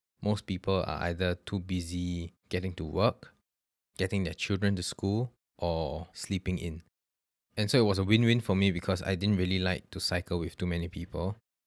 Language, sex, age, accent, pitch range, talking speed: English, male, 20-39, Malaysian, 85-105 Hz, 185 wpm